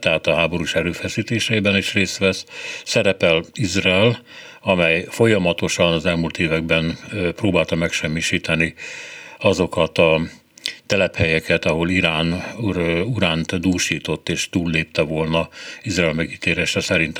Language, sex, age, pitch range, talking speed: Hungarian, male, 60-79, 85-105 Hz, 105 wpm